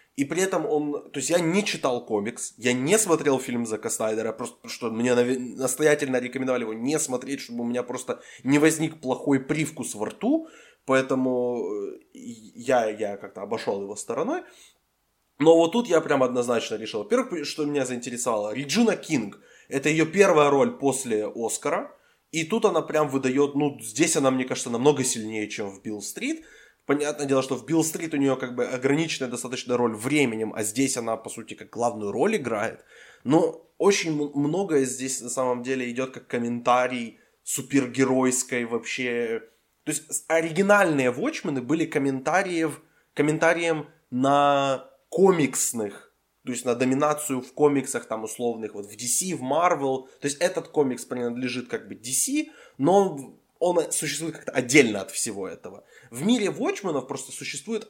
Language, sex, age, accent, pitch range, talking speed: Ukrainian, male, 20-39, native, 125-160 Hz, 160 wpm